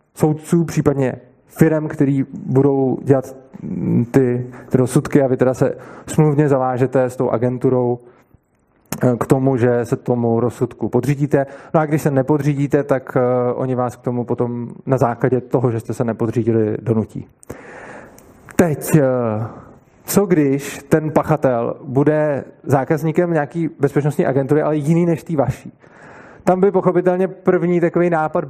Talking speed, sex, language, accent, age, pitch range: 135 wpm, male, Czech, native, 20-39, 130-175 Hz